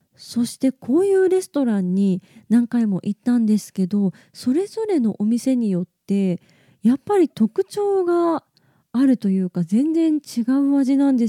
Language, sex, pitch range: Japanese, female, 185-265 Hz